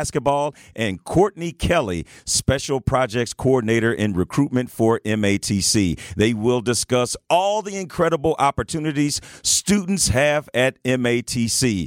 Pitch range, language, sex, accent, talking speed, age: 115-145 Hz, English, male, American, 110 wpm, 40-59